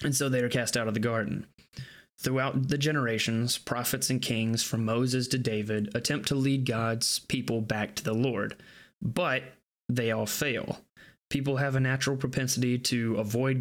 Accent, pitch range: American, 115-135 Hz